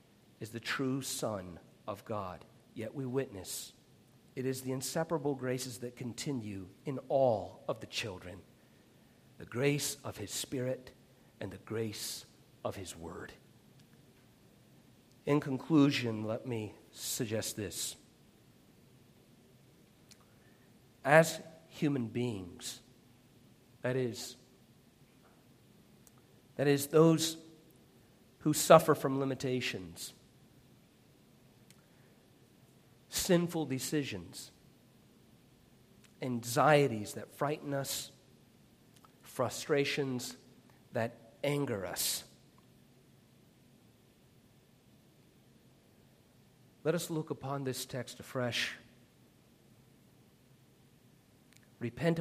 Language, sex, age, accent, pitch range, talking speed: English, male, 50-69, American, 115-145 Hz, 80 wpm